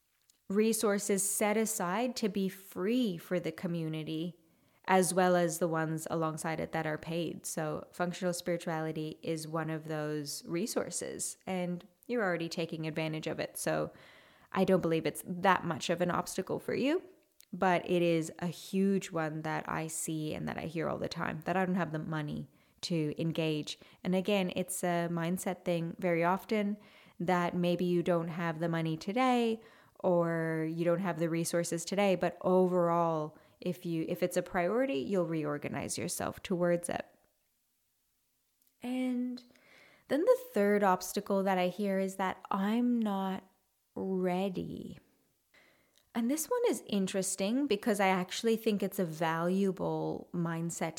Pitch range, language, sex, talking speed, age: 165-200 Hz, English, female, 155 wpm, 20-39